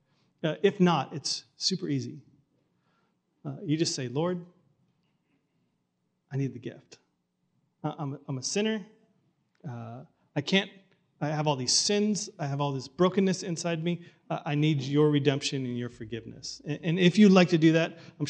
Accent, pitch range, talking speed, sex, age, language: American, 130-165 Hz, 165 wpm, male, 30-49, English